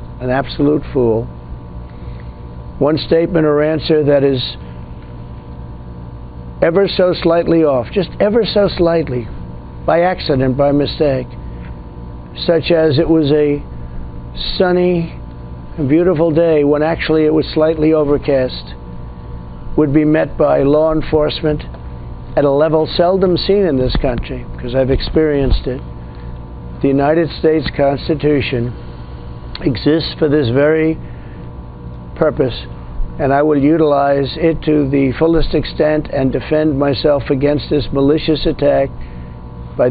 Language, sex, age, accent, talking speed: English, male, 50-69, American, 120 wpm